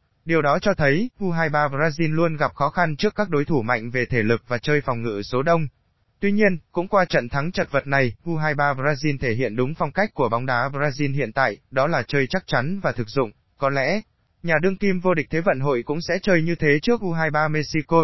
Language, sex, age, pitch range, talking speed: Vietnamese, male, 20-39, 135-170 Hz, 240 wpm